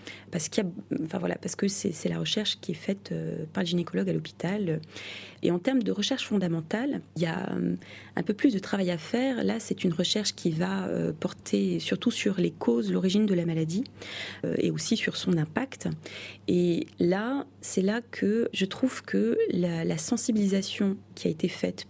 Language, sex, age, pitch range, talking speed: French, female, 30-49, 165-210 Hz, 195 wpm